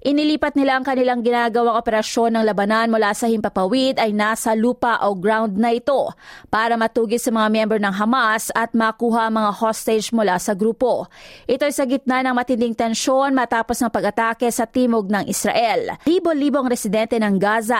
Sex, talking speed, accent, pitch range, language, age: female, 165 wpm, native, 220-255 Hz, Filipino, 20-39